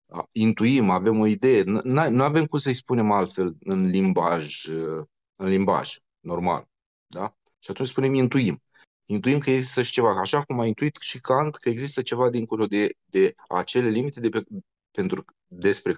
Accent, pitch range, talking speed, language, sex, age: native, 100-140 Hz, 160 wpm, Romanian, male, 30-49